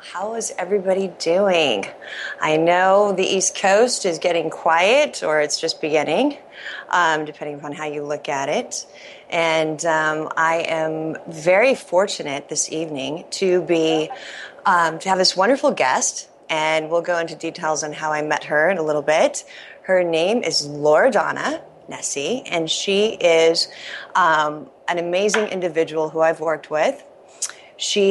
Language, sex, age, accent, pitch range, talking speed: English, female, 30-49, American, 160-195 Hz, 155 wpm